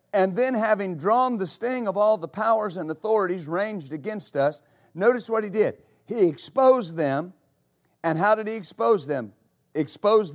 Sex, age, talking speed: male, 50-69, 170 wpm